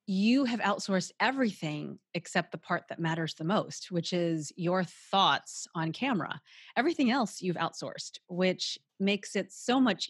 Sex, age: female, 30-49